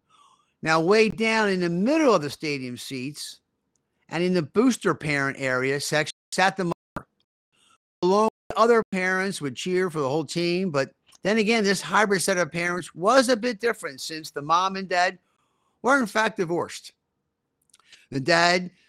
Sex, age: male, 50-69